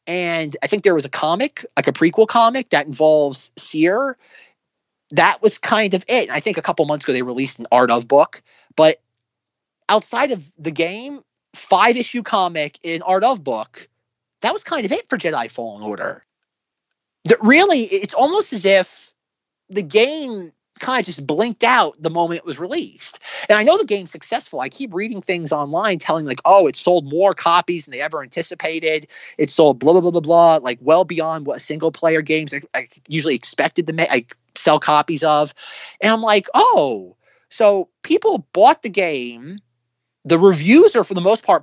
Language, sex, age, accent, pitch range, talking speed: English, male, 30-49, American, 160-240 Hz, 185 wpm